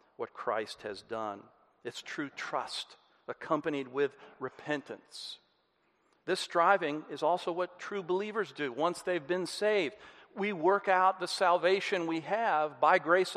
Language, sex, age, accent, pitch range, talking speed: English, male, 50-69, American, 135-180 Hz, 140 wpm